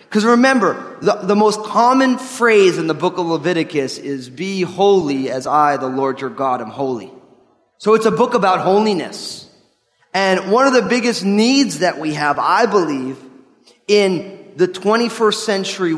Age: 20-39